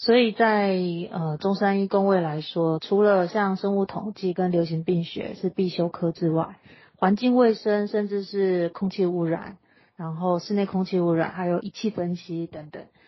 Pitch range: 170-205 Hz